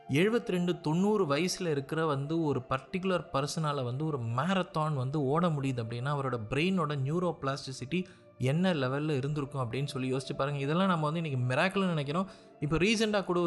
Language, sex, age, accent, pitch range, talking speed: Tamil, male, 30-49, native, 135-180 Hz, 160 wpm